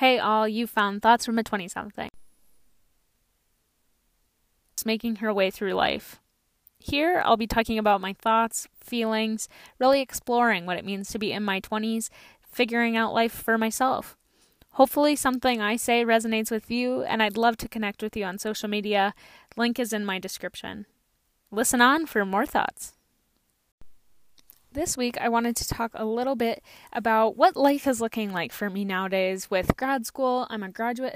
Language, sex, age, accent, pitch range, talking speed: English, female, 10-29, American, 210-250 Hz, 170 wpm